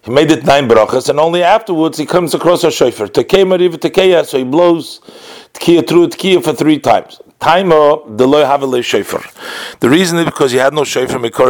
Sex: male